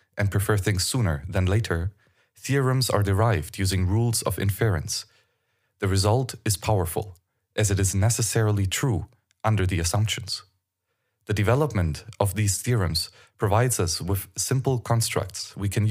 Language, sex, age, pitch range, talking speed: English, male, 30-49, 95-115 Hz, 140 wpm